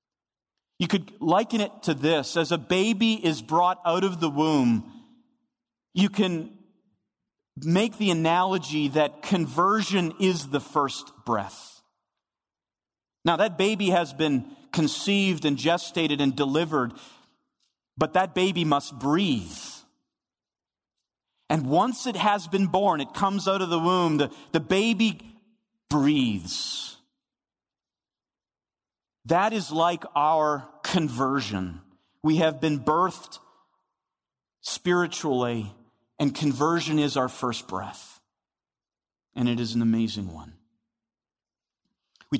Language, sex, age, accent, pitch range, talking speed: English, male, 40-59, American, 145-200 Hz, 115 wpm